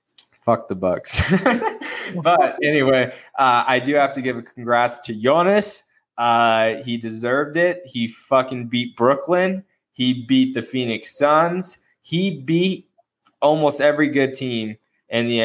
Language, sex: English, male